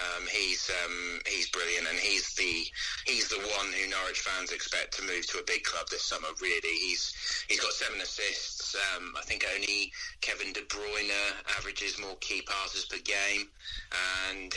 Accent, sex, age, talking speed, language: British, male, 30-49, 175 wpm, English